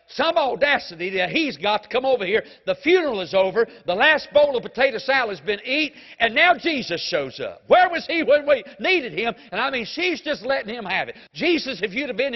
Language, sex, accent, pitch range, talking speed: English, male, American, 210-295 Hz, 235 wpm